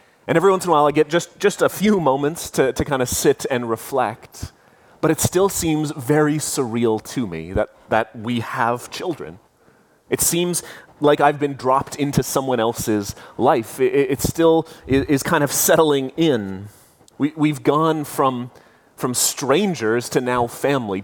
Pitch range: 125-155 Hz